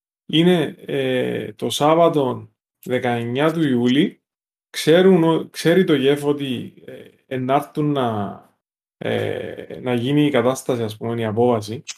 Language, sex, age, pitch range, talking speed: Greek, male, 20-39, 125-170 Hz, 90 wpm